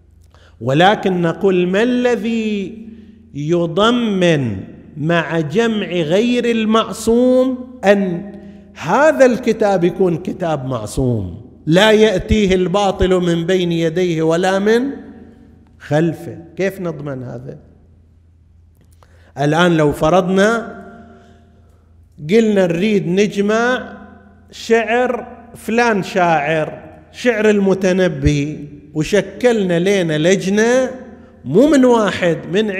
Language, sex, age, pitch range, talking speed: Arabic, male, 50-69, 150-215 Hz, 80 wpm